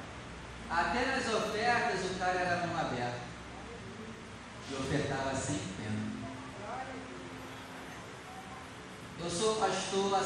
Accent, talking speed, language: Brazilian, 90 wpm, Portuguese